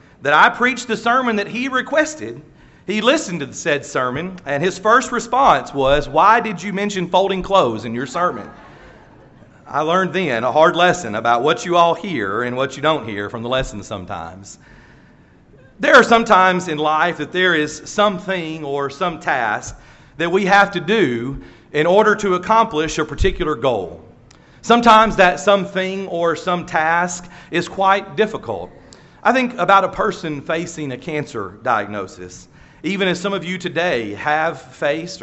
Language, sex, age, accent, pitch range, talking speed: English, male, 40-59, American, 150-195 Hz, 170 wpm